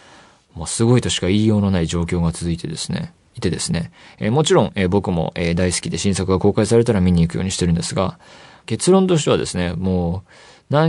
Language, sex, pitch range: Japanese, male, 95-140 Hz